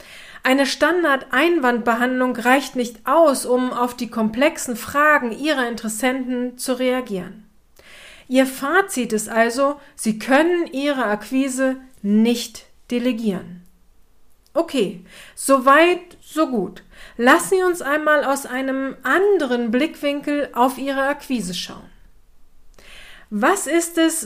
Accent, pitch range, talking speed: German, 225-295 Hz, 105 wpm